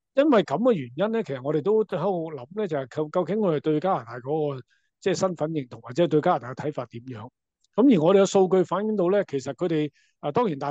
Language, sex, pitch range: Chinese, male, 140-190 Hz